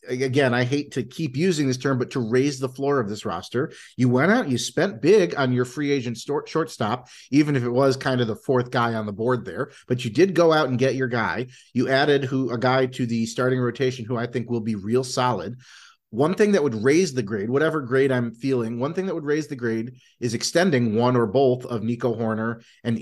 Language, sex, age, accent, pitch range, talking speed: English, male, 30-49, American, 115-135 Hz, 240 wpm